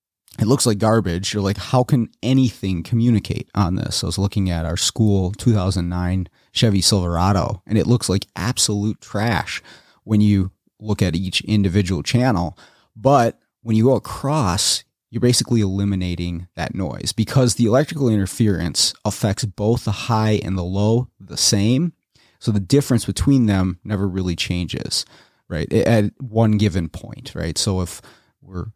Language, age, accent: English, 30-49, American